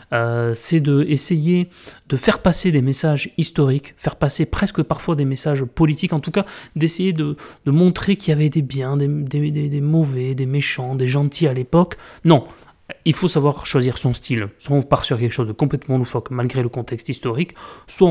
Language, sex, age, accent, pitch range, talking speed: French, male, 30-49, French, 125-155 Hz, 200 wpm